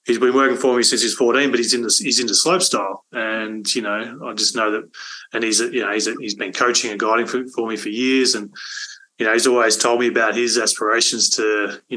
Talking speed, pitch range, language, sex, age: 260 wpm, 105-125 Hz, English, male, 20-39